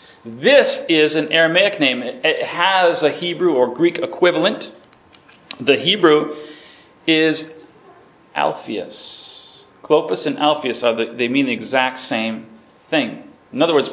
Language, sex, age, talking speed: English, male, 40-59, 125 wpm